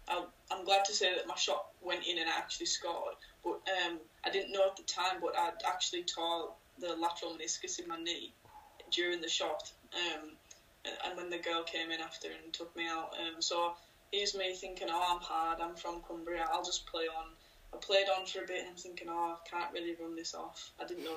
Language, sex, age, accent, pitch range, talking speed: English, female, 10-29, British, 165-185 Hz, 225 wpm